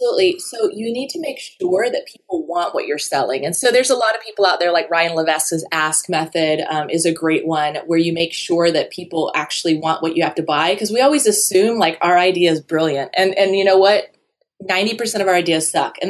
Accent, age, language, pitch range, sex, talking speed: American, 20-39, English, 170-215 Hz, female, 240 wpm